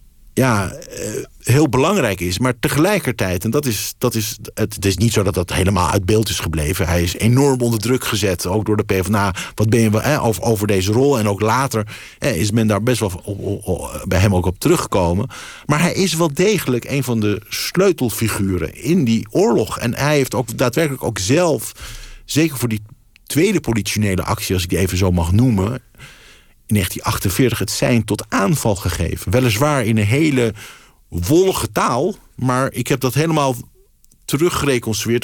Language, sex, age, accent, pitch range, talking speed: Dutch, male, 50-69, Dutch, 105-135 Hz, 170 wpm